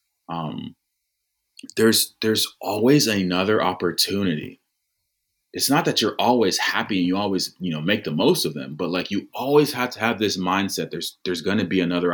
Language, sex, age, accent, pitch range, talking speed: English, male, 30-49, American, 90-130 Hz, 185 wpm